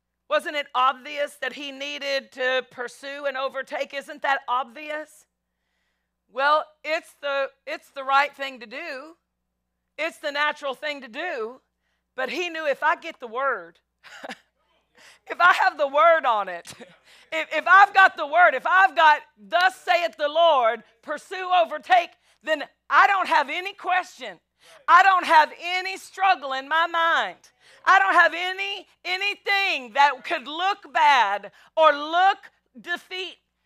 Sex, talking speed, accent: female, 150 wpm, American